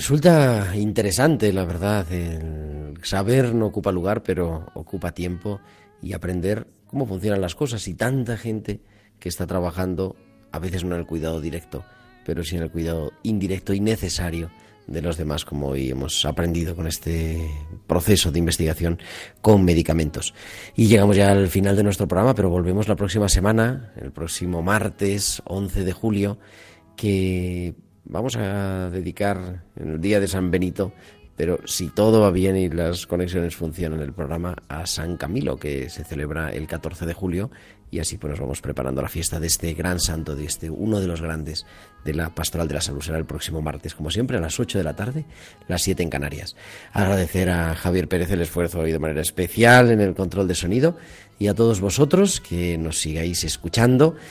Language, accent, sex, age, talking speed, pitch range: Spanish, Spanish, male, 40-59, 185 wpm, 80-105 Hz